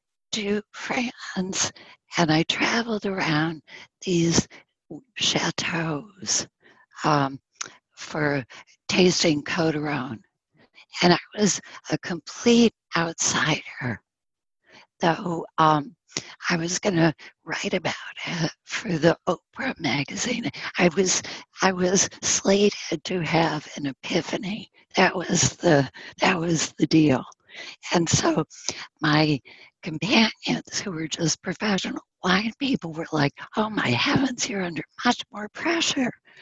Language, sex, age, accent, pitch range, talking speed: English, female, 60-79, American, 155-205 Hz, 110 wpm